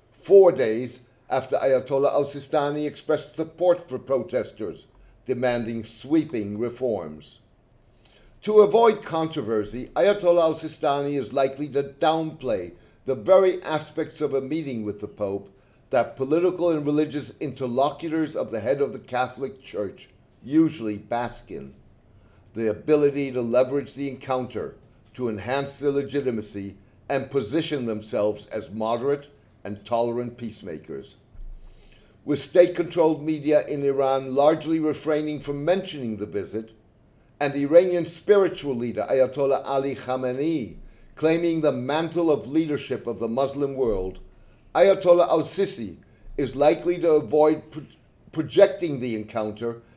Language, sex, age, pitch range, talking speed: English, male, 60-79, 120-155 Hz, 120 wpm